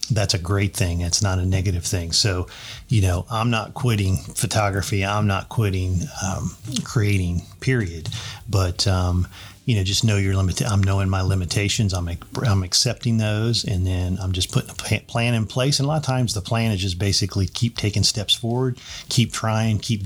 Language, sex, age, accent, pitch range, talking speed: English, male, 40-59, American, 95-115 Hz, 190 wpm